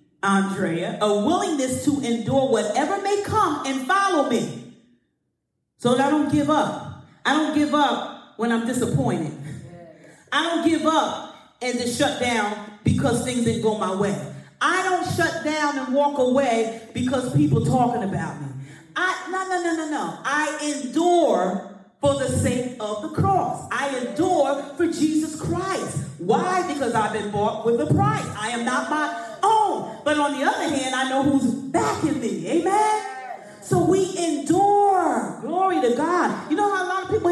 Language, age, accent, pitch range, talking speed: English, 40-59, American, 225-330 Hz, 170 wpm